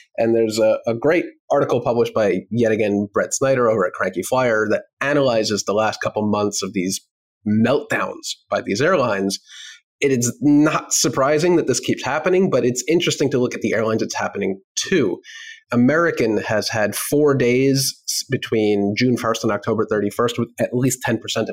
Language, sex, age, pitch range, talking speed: English, male, 30-49, 110-175 Hz, 175 wpm